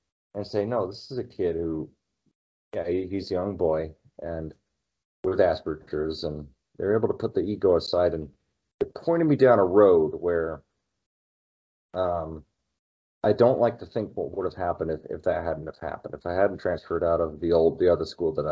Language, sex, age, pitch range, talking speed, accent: English, male, 30-49, 80-100 Hz, 200 wpm, American